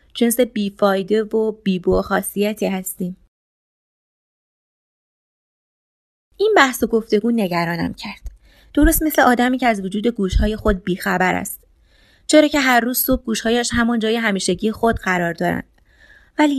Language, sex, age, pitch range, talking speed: Persian, female, 30-49, 200-245 Hz, 125 wpm